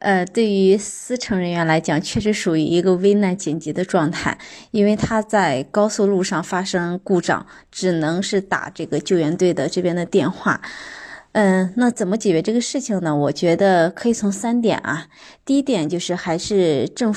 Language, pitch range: Chinese, 170-220 Hz